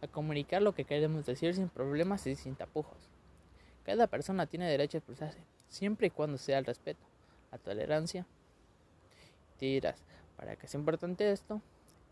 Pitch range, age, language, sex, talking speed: 130-170 Hz, 20-39, Spanish, male, 160 wpm